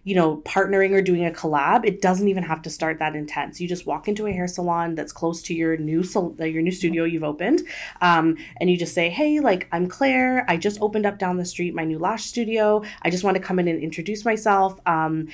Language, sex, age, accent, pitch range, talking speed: English, female, 20-39, American, 160-200 Hz, 245 wpm